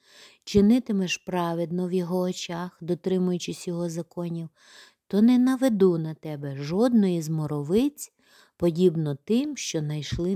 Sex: female